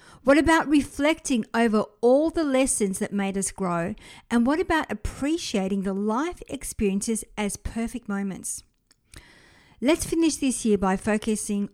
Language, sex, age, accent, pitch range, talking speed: English, female, 50-69, Australian, 200-260 Hz, 140 wpm